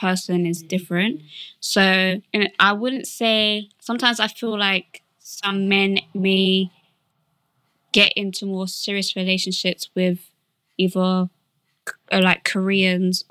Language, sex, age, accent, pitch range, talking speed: English, female, 20-39, British, 180-210 Hz, 110 wpm